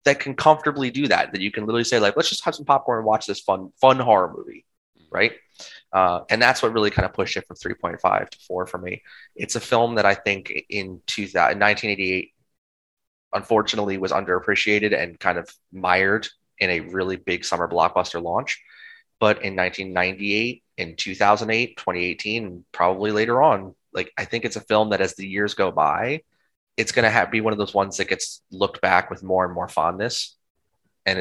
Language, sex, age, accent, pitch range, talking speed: English, male, 20-39, American, 90-110 Hz, 195 wpm